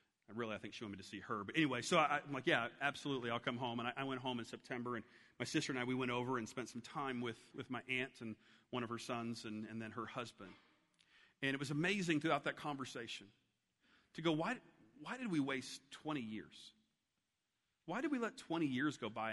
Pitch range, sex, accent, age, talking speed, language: 115-150 Hz, male, American, 40-59, 240 wpm, English